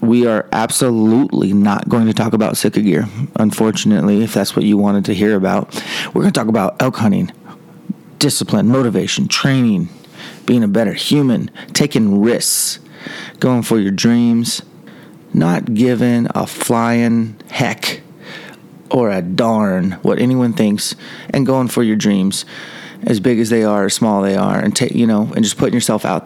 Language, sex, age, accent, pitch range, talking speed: English, male, 30-49, American, 105-125 Hz, 170 wpm